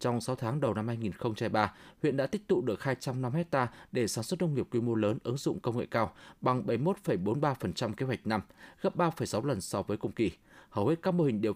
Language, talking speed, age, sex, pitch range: Vietnamese, 230 wpm, 20-39, male, 115-160 Hz